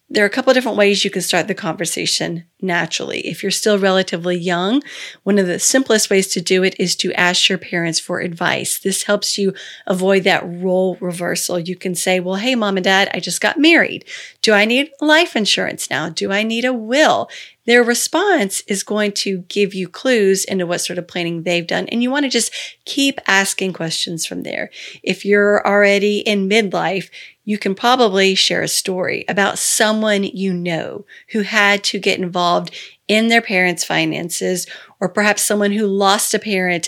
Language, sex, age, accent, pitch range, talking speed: English, female, 40-59, American, 185-220 Hz, 190 wpm